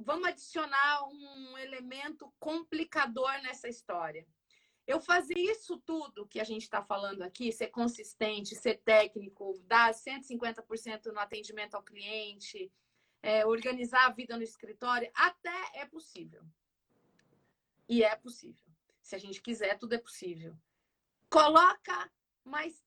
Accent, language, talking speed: Brazilian, Portuguese, 125 wpm